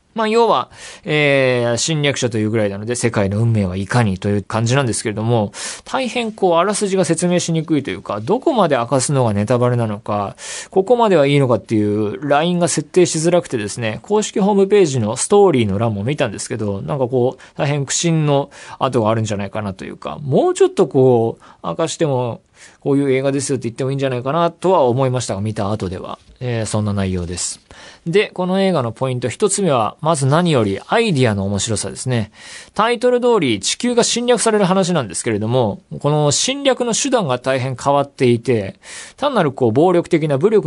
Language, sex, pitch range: Japanese, male, 110-170 Hz